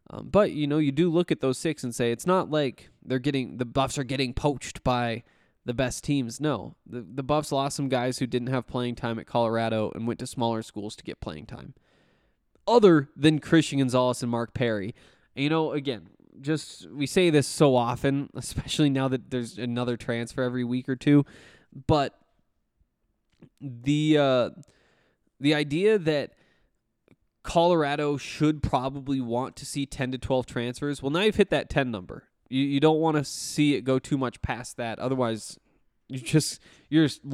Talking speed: 185 wpm